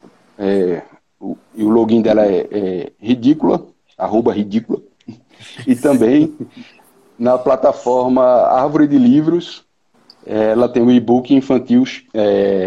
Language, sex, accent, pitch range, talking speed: Portuguese, male, Brazilian, 120-155 Hz, 125 wpm